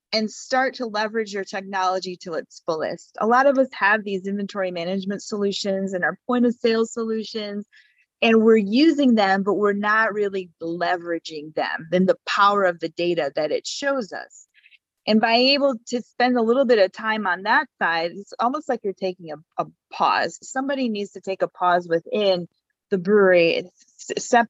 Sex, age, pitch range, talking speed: female, 30-49, 190-245 Hz, 185 wpm